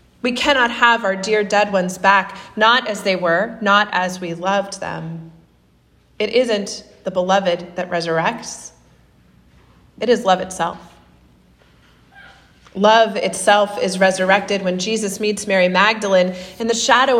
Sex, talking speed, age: female, 135 wpm, 30-49